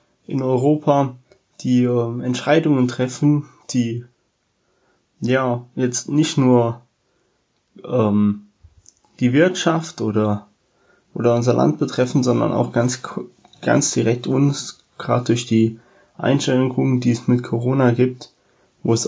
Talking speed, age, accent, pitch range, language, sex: 115 wpm, 20-39, German, 115-135 Hz, German, male